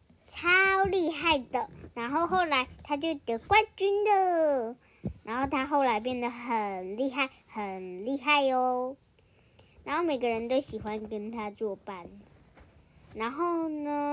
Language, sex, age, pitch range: Chinese, male, 10-29, 225-285 Hz